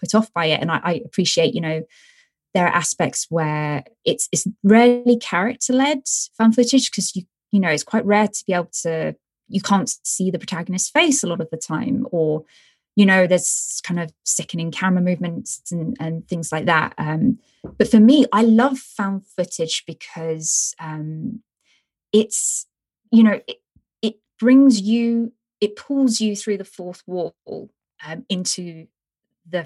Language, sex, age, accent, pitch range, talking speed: English, female, 20-39, British, 160-215 Hz, 170 wpm